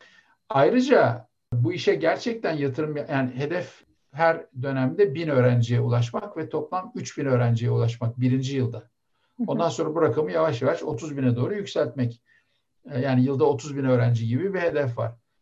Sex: male